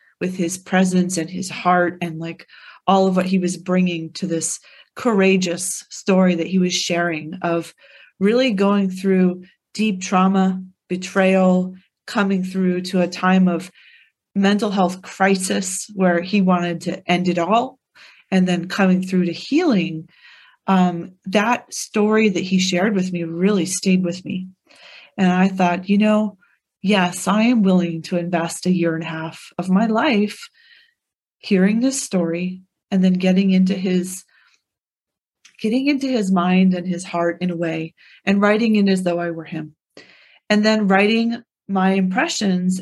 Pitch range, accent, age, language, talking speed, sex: 175-200 Hz, American, 30-49, English, 160 wpm, female